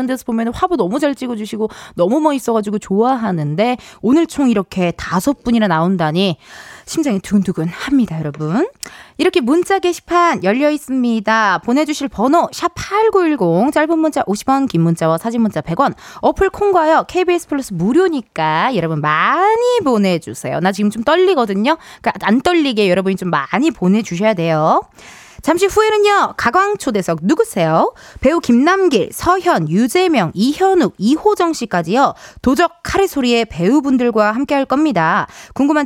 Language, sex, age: Korean, female, 20-39